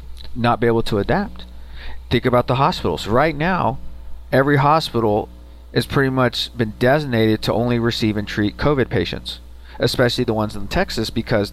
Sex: male